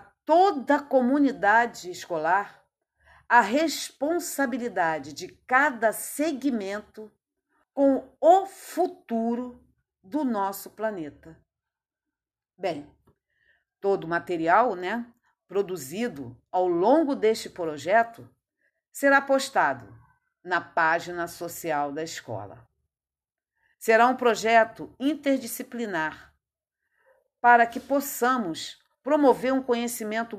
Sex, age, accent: female, 50-69, Brazilian